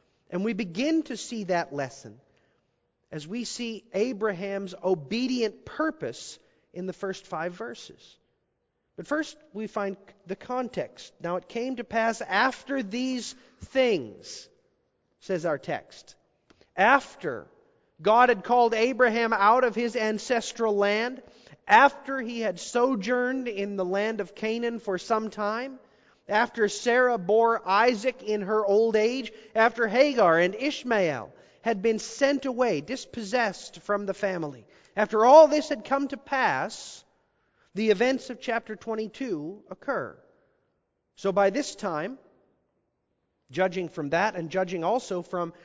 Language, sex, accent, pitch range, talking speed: English, male, American, 185-245 Hz, 135 wpm